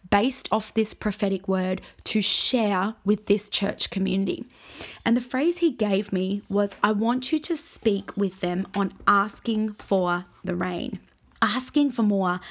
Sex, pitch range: female, 195-230 Hz